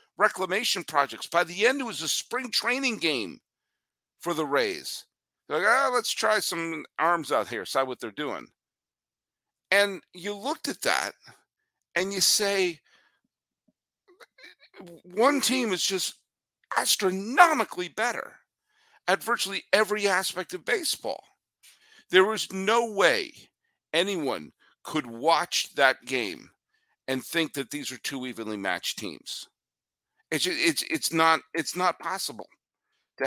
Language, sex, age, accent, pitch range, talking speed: English, male, 50-69, American, 145-225 Hz, 135 wpm